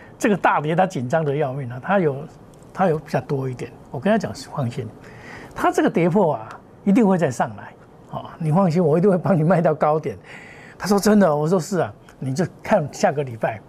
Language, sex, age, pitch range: Chinese, male, 60-79, 150-205 Hz